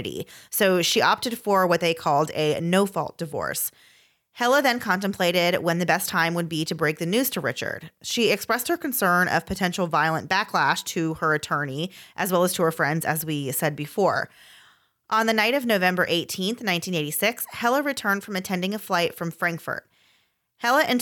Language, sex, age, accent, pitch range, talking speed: English, female, 30-49, American, 160-205 Hz, 185 wpm